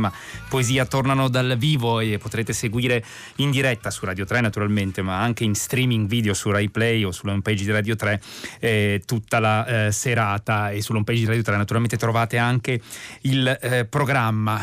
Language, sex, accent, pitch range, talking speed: Italian, male, native, 105-130 Hz, 175 wpm